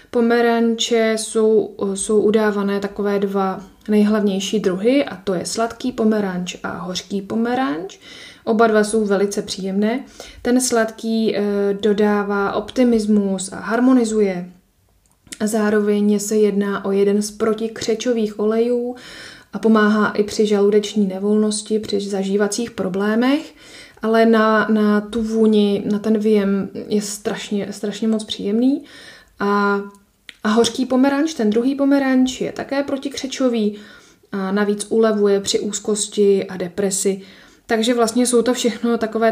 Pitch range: 200-225 Hz